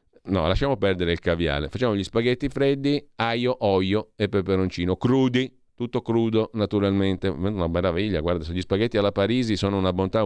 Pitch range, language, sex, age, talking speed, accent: 90-115 Hz, Italian, male, 40-59, 160 wpm, native